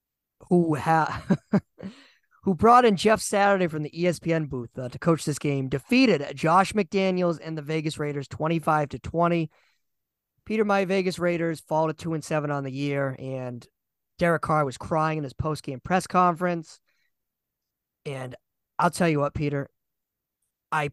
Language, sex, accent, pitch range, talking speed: English, male, American, 145-175 Hz, 160 wpm